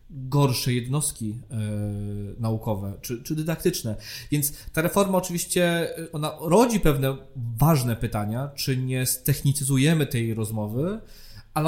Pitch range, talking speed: 130-160 Hz, 110 wpm